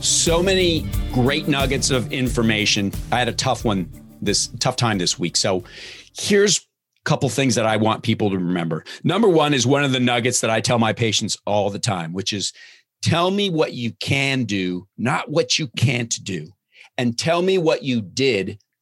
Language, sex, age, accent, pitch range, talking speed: English, male, 40-59, American, 110-145 Hz, 195 wpm